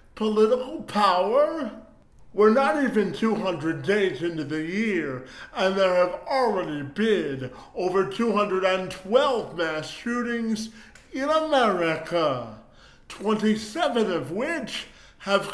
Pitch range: 170-235 Hz